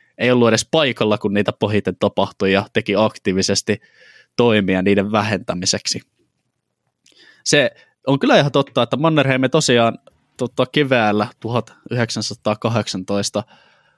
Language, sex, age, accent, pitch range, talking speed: Finnish, male, 20-39, native, 105-125 Hz, 105 wpm